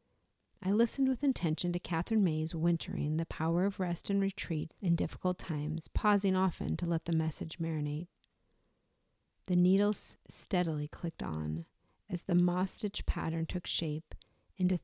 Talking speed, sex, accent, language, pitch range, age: 145 wpm, female, American, English, 150-180 Hz, 40-59